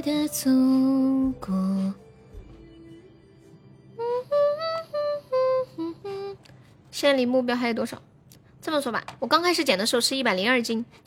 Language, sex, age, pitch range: Chinese, female, 10-29, 255-320 Hz